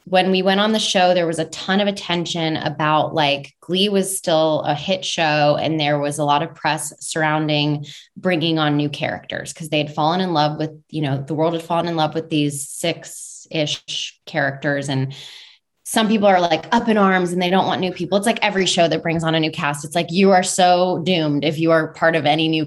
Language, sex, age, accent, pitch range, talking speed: English, female, 20-39, American, 150-185 Hz, 235 wpm